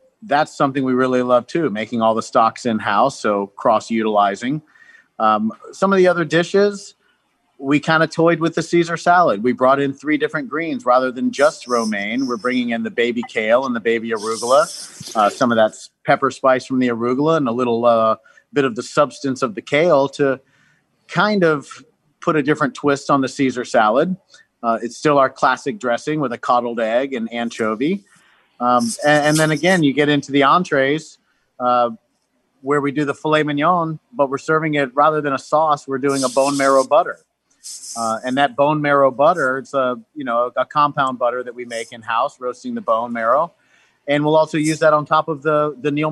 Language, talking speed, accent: English, 200 wpm, American